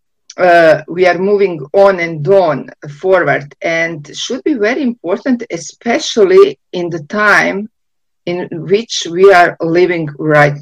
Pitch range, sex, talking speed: 145-180 Hz, female, 130 wpm